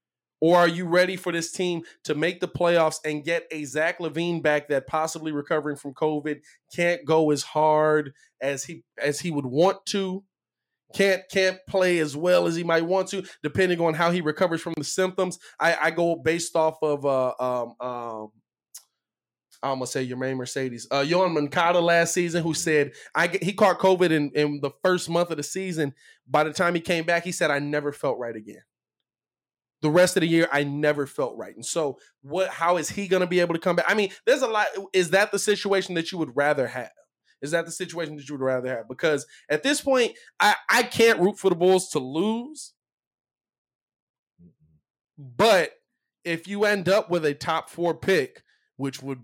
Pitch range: 145-185 Hz